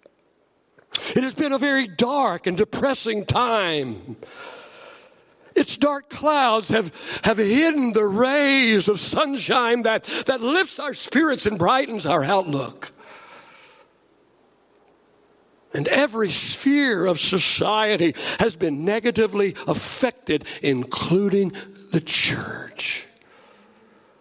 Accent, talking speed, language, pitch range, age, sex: American, 100 wpm, English, 205-295 Hz, 60-79, male